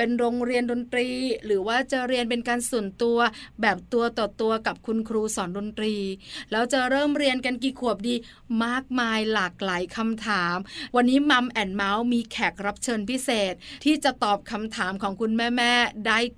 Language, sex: Thai, female